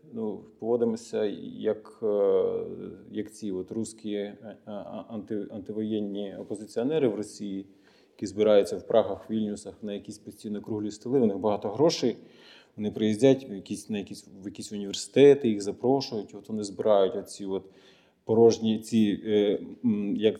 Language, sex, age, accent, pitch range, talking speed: Ukrainian, male, 20-39, native, 105-125 Hz, 130 wpm